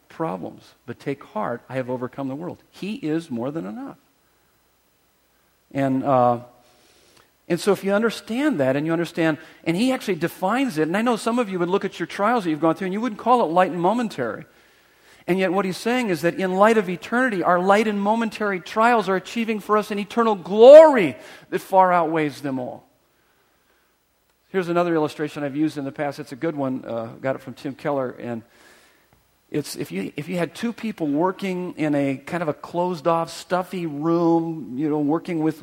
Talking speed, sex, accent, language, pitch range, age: 205 wpm, male, American, English, 140-190 Hz, 40-59